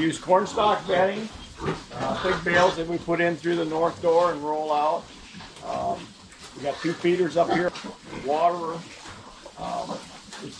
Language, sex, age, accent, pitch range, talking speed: English, male, 50-69, American, 155-180 Hz, 155 wpm